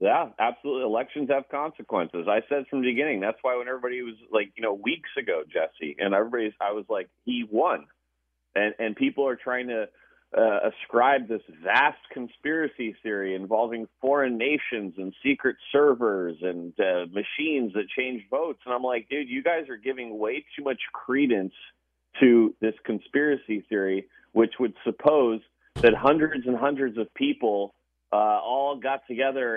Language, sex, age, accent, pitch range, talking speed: English, male, 40-59, American, 105-140 Hz, 165 wpm